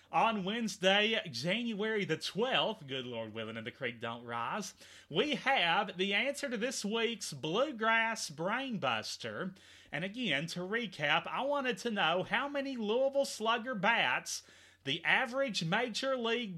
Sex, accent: male, American